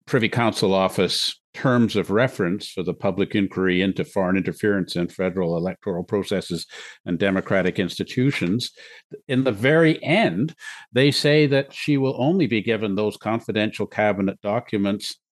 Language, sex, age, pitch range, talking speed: English, male, 50-69, 95-110 Hz, 140 wpm